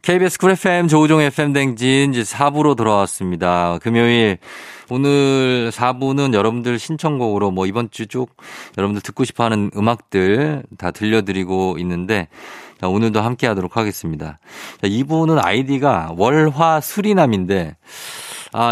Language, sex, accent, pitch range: Korean, male, native, 100-140 Hz